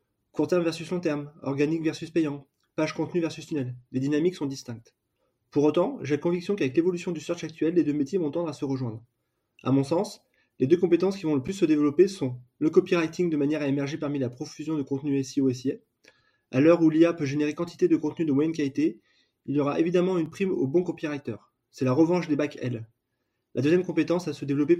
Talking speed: 225 wpm